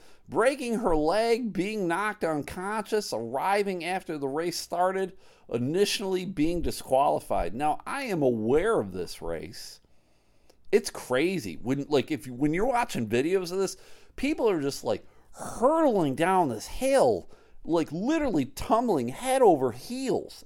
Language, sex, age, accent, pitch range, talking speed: English, male, 40-59, American, 130-200 Hz, 135 wpm